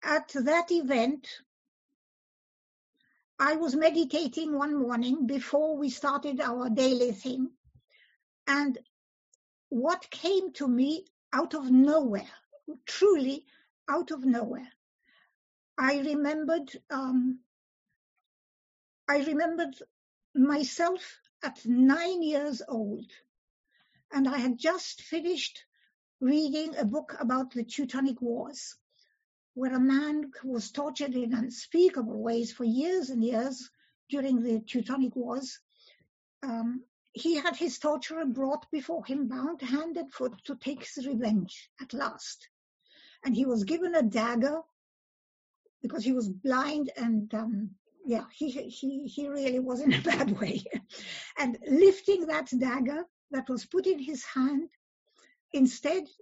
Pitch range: 255-310 Hz